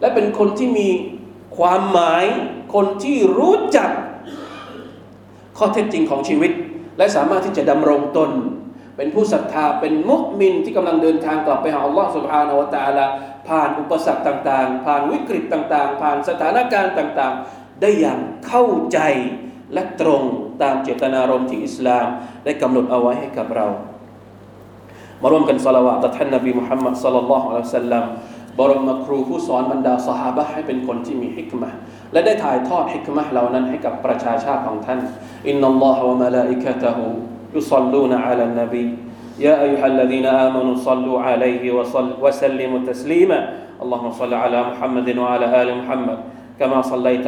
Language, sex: Thai, male